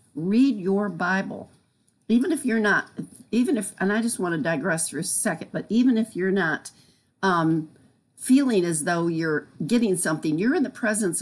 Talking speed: 180 wpm